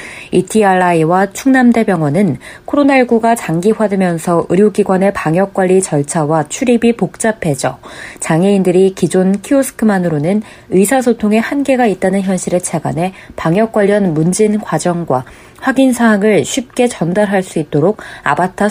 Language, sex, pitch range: Korean, female, 165-215 Hz